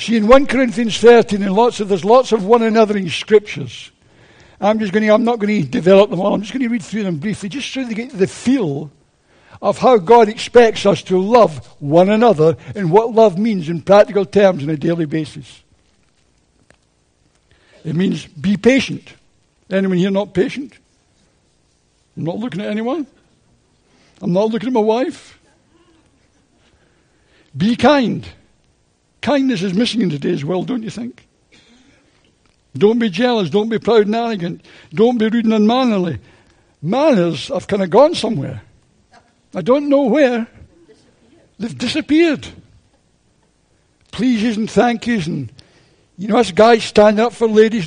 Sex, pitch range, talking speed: male, 185-240 Hz, 160 wpm